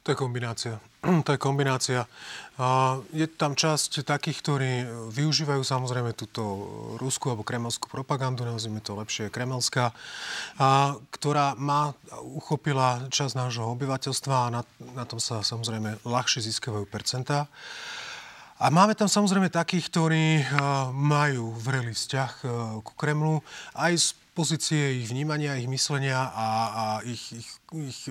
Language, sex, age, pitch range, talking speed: Slovak, male, 30-49, 120-145 Hz, 130 wpm